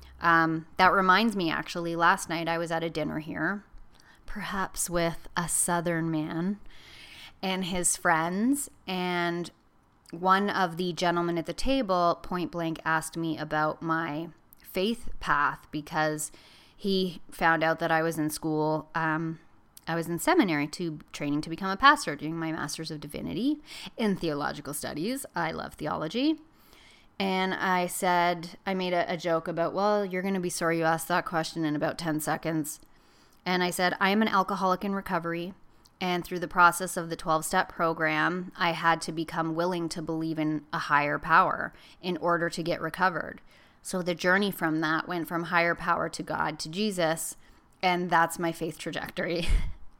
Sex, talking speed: female, 170 wpm